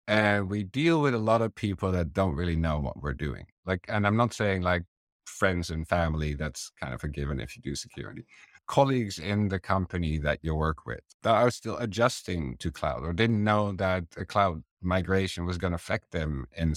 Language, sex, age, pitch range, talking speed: English, male, 50-69, 80-100 Hz, 215 wpm